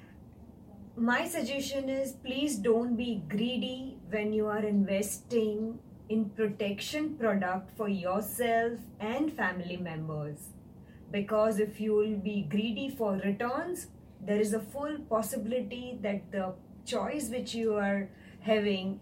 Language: English